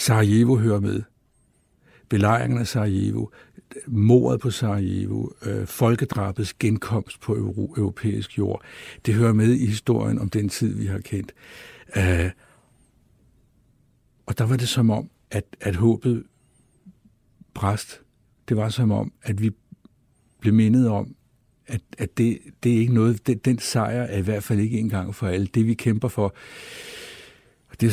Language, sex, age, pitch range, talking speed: Danish, male, 60-79, 100-120 Hz, 145 wpm